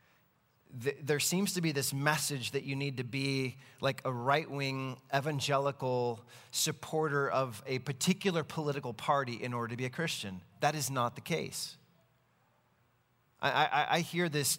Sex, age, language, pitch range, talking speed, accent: male, 30-49, English, 130-165 Hz, 150 wpm, American